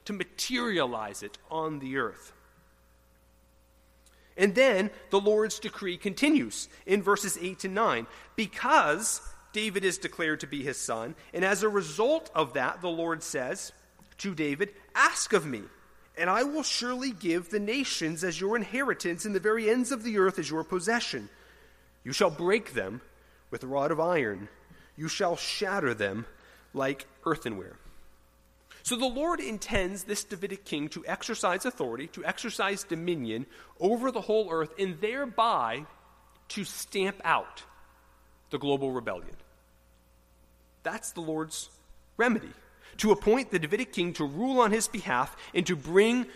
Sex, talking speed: male, 150 wpm